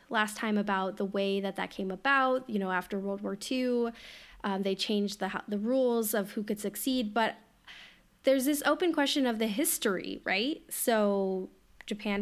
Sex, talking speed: female, 175 wpm